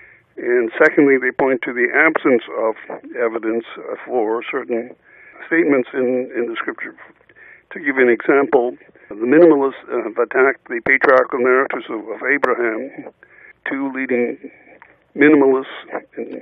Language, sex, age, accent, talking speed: English, male, 60-79, American, 130 wpm